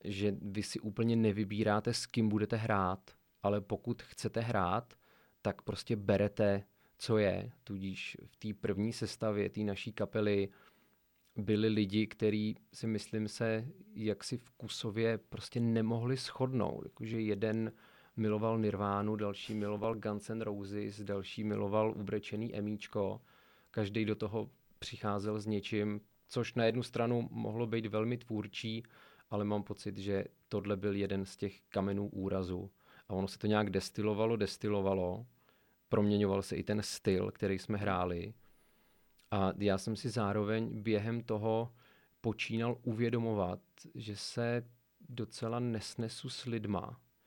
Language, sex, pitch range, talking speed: Czech, male, 100-115 Hz, 130 wpm